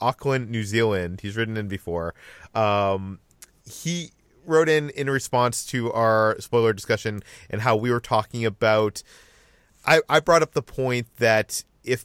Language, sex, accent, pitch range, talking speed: English, male, American, 105-130 Hz, 155 wpm